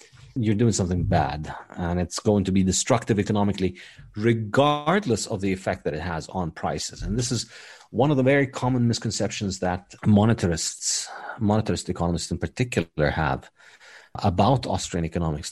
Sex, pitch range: male, 85-115 Hz